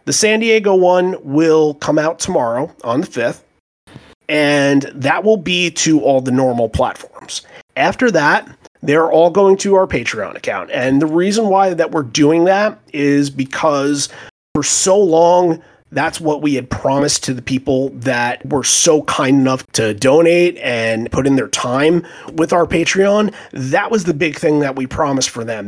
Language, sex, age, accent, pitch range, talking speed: English, male, 30-49, American, 135-170 Hz, 175 wpm